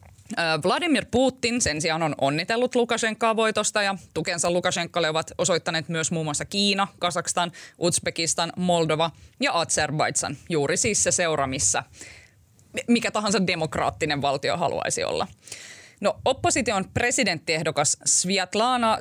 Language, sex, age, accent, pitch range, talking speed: Finnish, female, 20-39, native, 155-205 Hz, 115 wpm